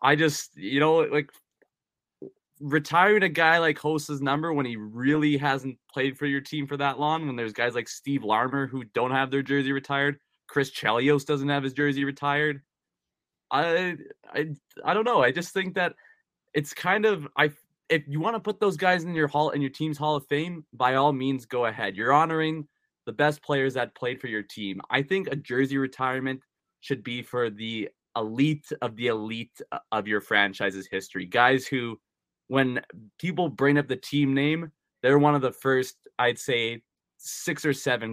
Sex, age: male, 20-39